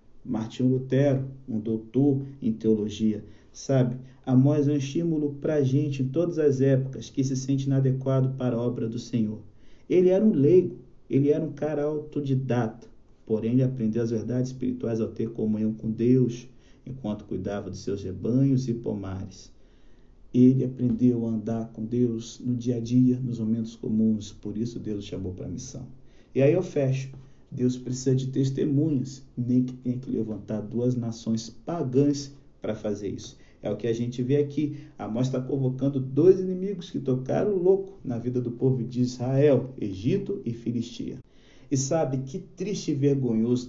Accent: Brazilian